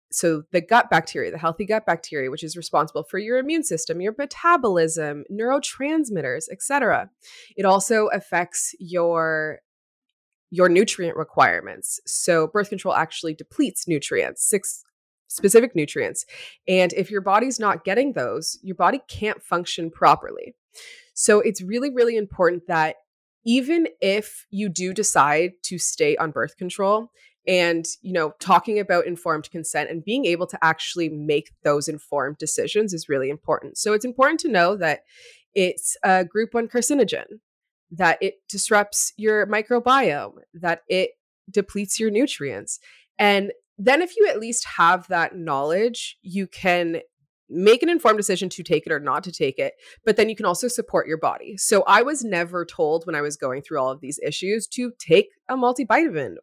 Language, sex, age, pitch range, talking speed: English, female, 20-39, 170-255 Hz, 165 wpm